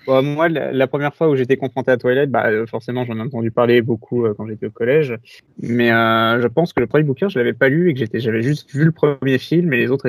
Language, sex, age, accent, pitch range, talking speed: French, male, 20-39, French, 120-140 Hz, 275 wpm